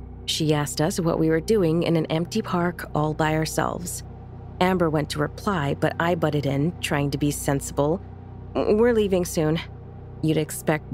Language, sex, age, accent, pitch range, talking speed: English, female, 30-49, American, 125-165 Hz, 170 wpm